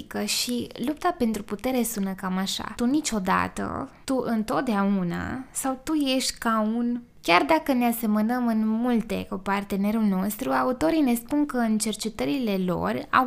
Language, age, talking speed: Romanian, 20-39, 150 wpm